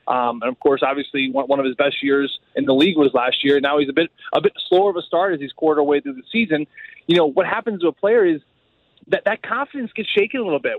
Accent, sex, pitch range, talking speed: American, male, 155-215 Hz, 275 wpm